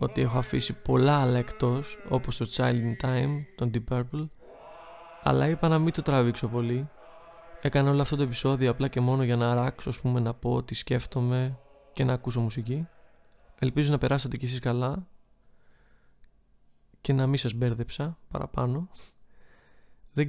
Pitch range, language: 120-145 Hz, Greek